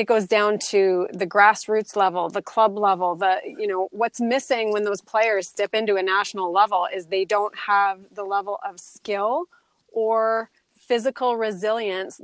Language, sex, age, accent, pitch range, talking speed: English, female, 30-49, American, 195-225 Hz, 165 wpm